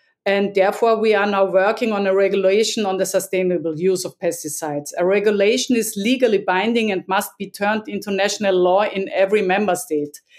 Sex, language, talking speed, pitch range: female, English, 180 wpm, 195-230 Hz